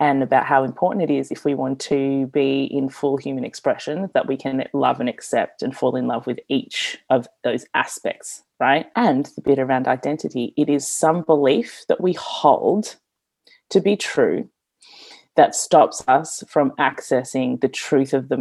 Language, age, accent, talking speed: English, 30-49, Australian, 180 wpm